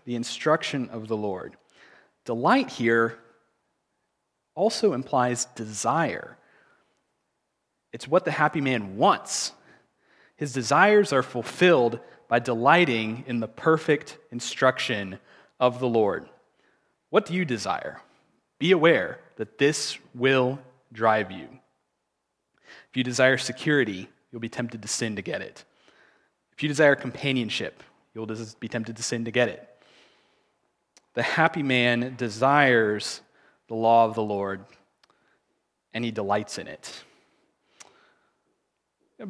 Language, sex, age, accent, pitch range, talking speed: English, male, 30-49, American, 110-140 Hz, 120 wpm